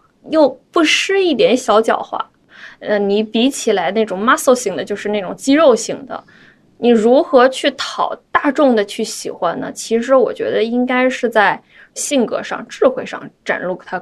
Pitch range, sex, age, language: 210-290 Hz, female, 20-39, Chinese